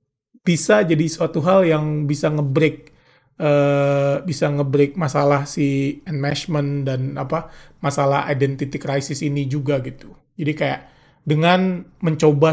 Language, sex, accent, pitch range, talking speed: Indonesian, male, native, 140-165 Hz, 125 wpm